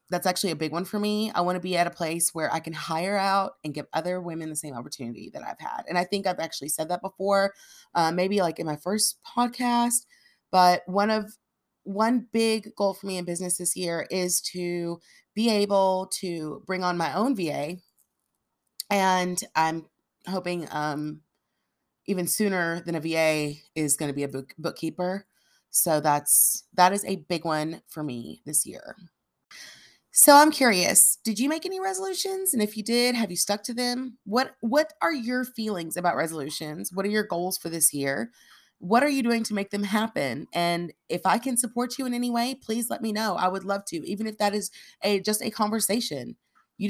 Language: English